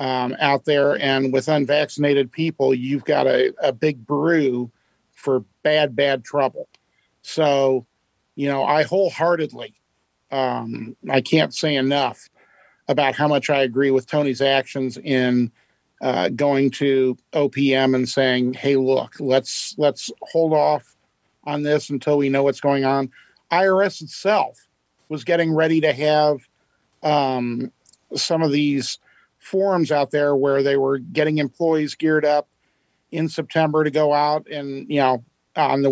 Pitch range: 135-155 Hz